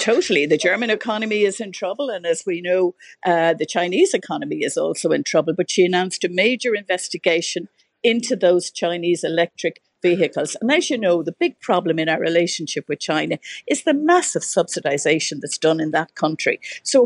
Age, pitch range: 50-69, 175-275 Hz